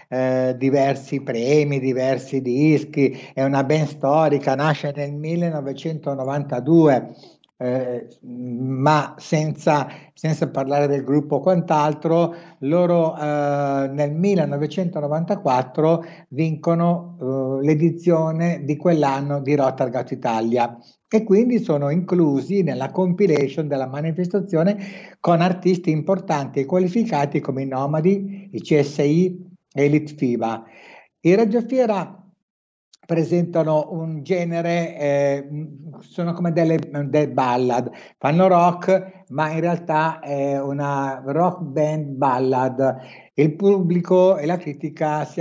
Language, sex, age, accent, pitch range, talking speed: Italian, male, 60-79, native, 135-170 Hz, 110 wpm